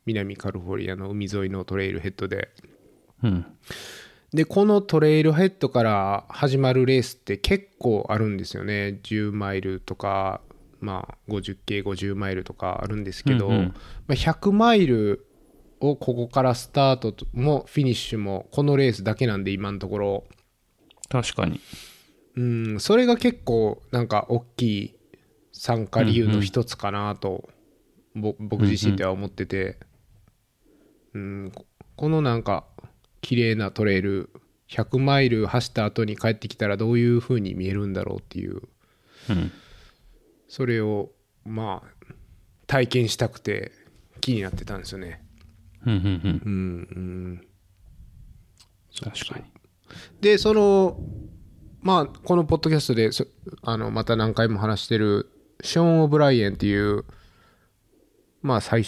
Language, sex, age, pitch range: Japanese, male, 20-39, 100-125 Hz